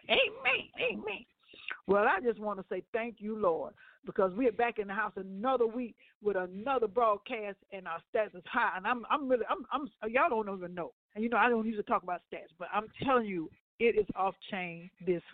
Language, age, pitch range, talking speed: English, 60-79, 185-235 Hz, 220 wpm